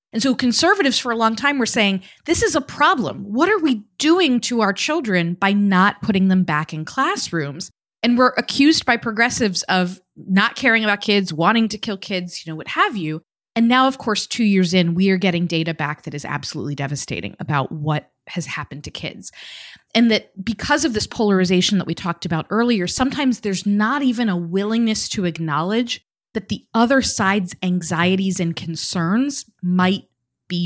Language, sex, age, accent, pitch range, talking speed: English, female, 30-49, American, 180-245 Hz, 190 wpm